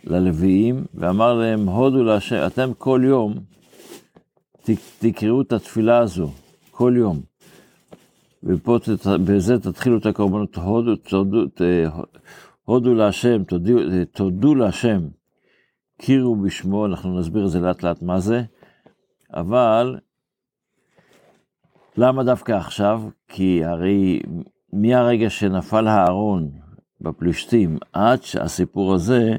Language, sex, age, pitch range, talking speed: Hebrew, male, 60-79, 90-115 Hz, 95 wpm